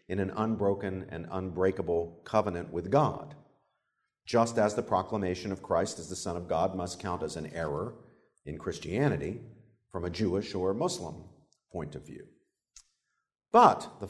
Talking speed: 155 wpm